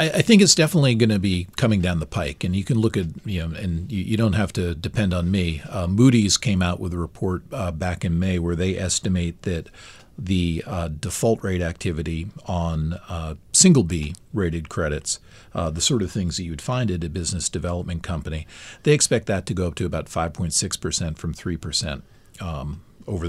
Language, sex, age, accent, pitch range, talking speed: English, male, 40-59, American, 85-115 Hz, 210 wpm